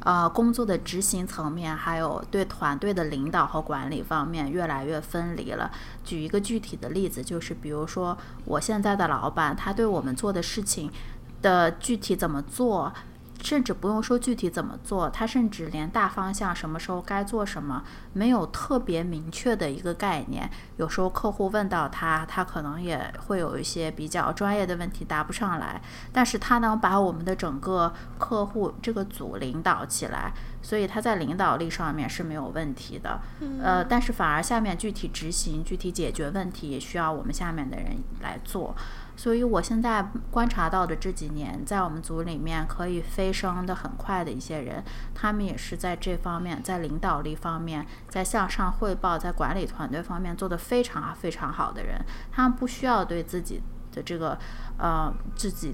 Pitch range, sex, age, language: 160-200 Hz, female, 20-39, Chinese